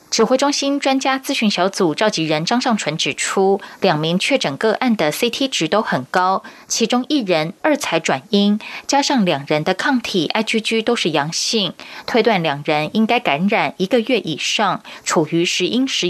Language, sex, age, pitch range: Chinese, female, 20-39, 175-240 Hz